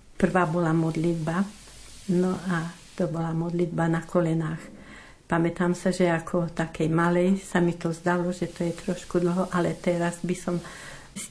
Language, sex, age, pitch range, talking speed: Slovak, female, 50-69, 170-185 Hz, 160 wpm